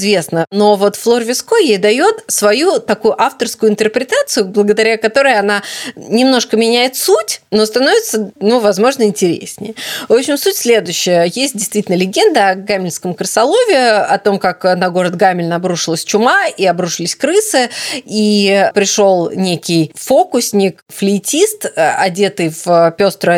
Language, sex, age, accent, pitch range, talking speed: Russian, female, 20-39, native, 185-235 Hz, 130 wpm